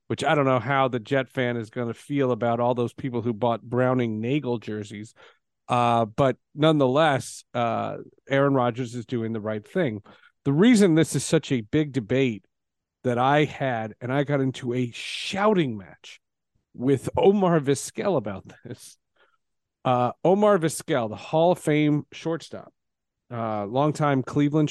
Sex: male